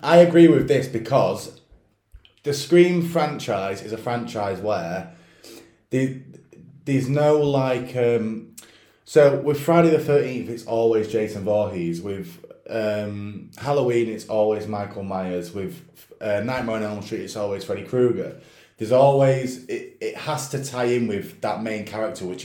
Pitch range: 105-130 Hz